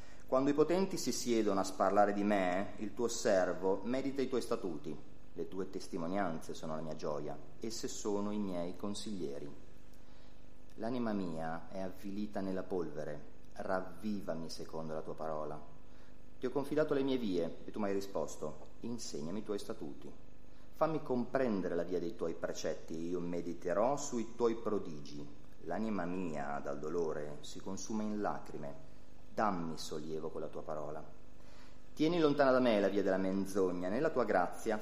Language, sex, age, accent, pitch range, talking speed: Italian, male, 30-49, native, 85-125 Hz, 155 wpm